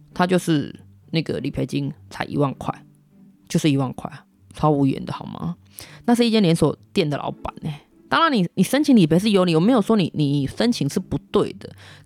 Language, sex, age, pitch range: Chinese, female, 20-39, 150-210 Hz